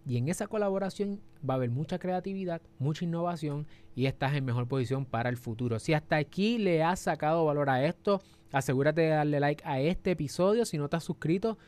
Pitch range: 125-175 Hz